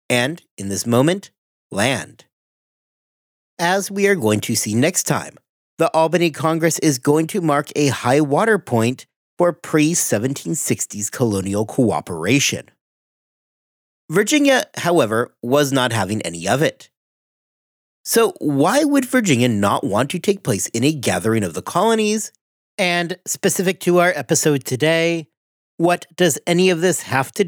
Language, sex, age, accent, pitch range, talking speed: English, male, 40-59, American, 125-185 Hz, 140 wpm